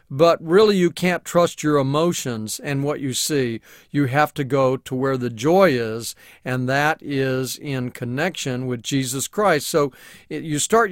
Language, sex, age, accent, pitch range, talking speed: English, male, 40-59, American, 135-170 Hz, 170 wpm